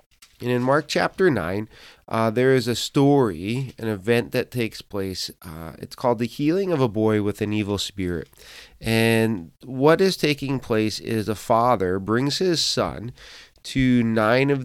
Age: 30-49